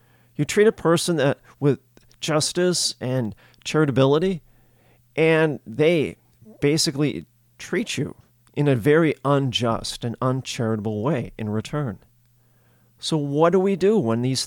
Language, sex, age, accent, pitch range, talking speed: English, male, 40-59, American, 120-150 Hz, 125 wpm